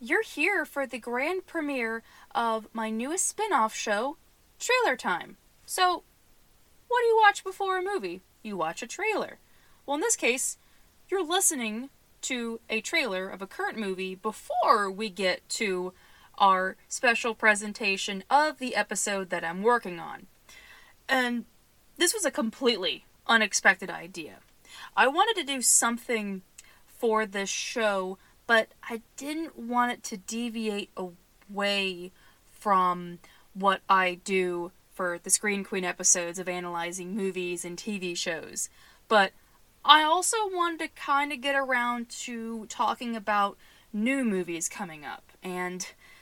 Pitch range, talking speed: 190-280 Hz, 140 wpm